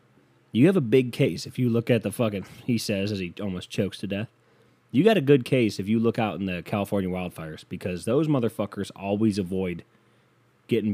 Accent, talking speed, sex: American, 210 wpm, male